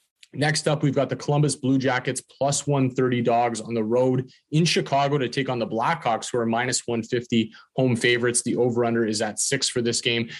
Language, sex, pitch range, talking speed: English, male, 115-135 Hz, 200 wpm